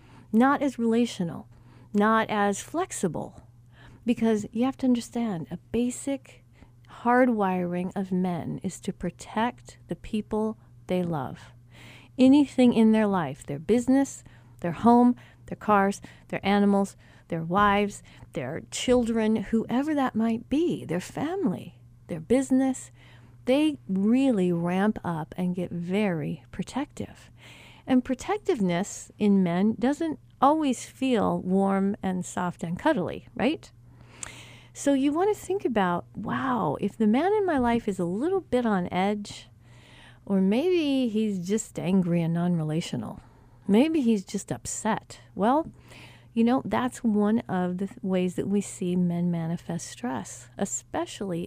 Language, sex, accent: English, female, American